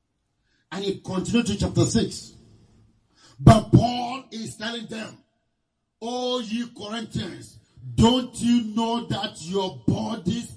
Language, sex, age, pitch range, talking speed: English, male, 50-69, 155-240 Hz, 115 wpm